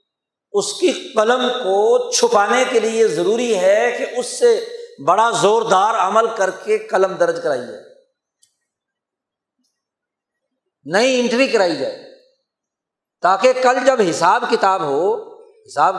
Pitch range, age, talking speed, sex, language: 195-295 Hz, 50-69, 120 wpm, male, Urdu